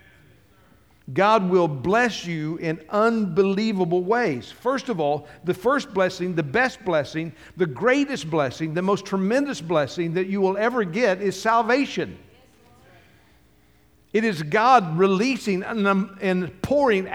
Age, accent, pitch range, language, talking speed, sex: 60-79, American, 150-220 Hz, English, 125 wpm, male